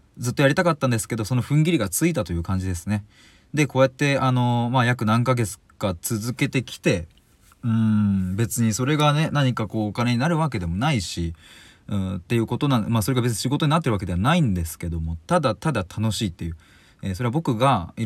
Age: 20-39